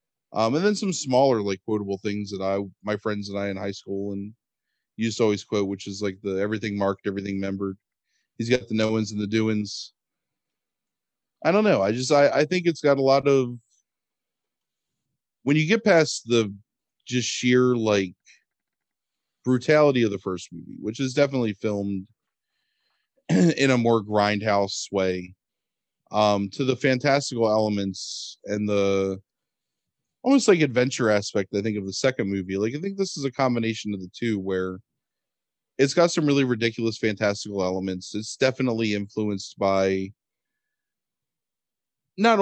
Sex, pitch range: male, 100-125 Hz